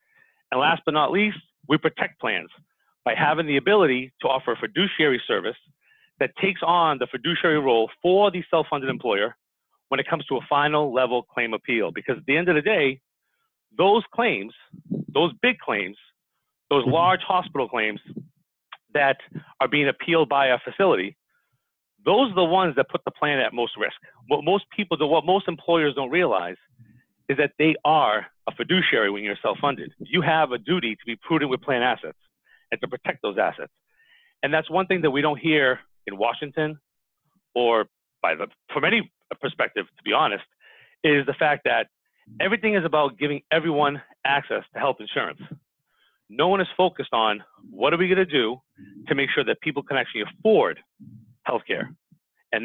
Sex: male